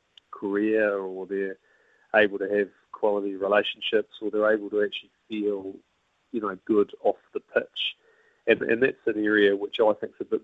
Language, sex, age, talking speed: English, male, 30-49, 180 wpm